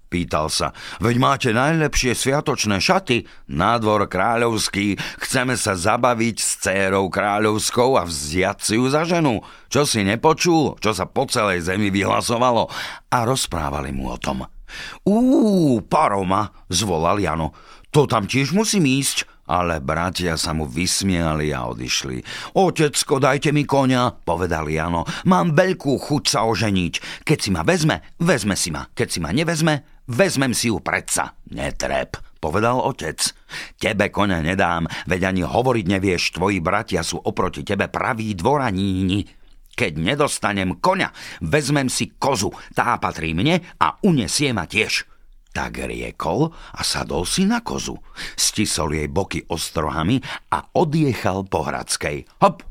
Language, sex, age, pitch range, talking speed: Slovak, male, 50-69, 85-135 Hz, 140 wpm